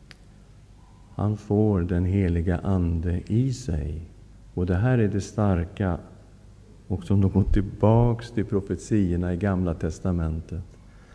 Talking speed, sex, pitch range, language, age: 125 wpm, male, 90-105 Hz, Swedish, 50-69